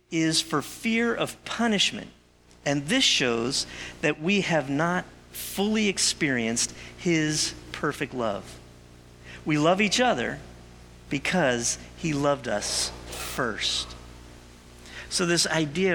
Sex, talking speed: male, 110 wpm